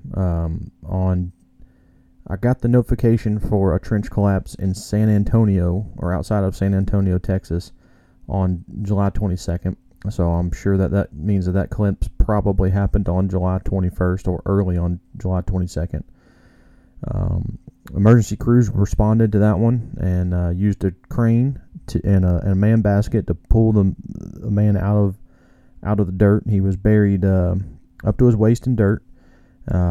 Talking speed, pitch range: 165 wpm, 90-110 Hz